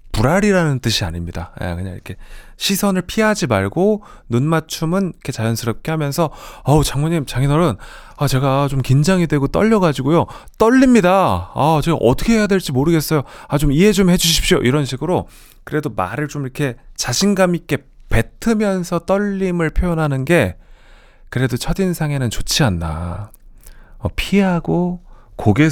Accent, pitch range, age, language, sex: native, 105-165 Hz, 30-49, Korean, male